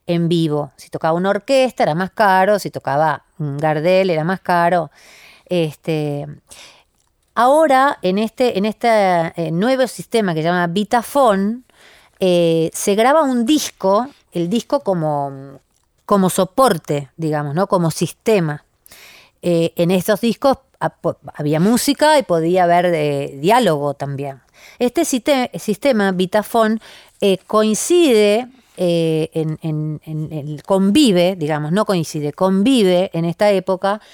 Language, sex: Spanish, female